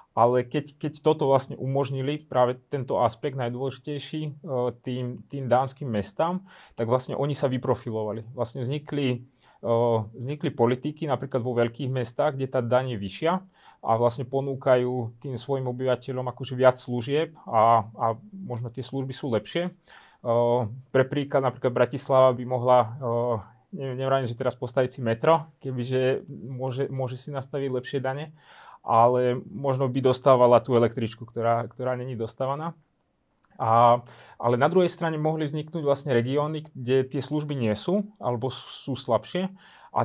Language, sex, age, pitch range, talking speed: Slovak, male, 30-49, 120-145 Hz, 140 wpm